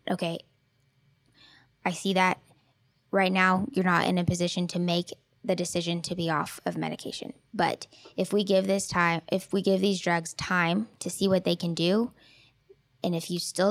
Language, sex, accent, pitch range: English, female, American, 170-200 Hz